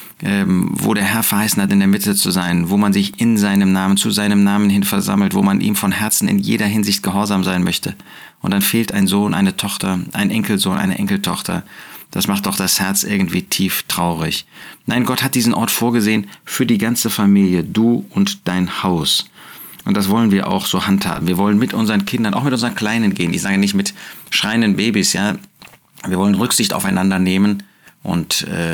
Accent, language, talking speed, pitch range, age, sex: German, German, 200 wpm, 95-130 Hz, 40-59, male